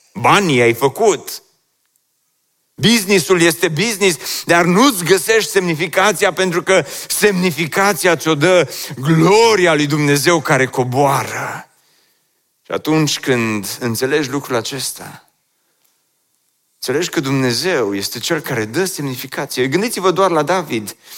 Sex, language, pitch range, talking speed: male, Romanian, 125-185 Hz, 110 wpm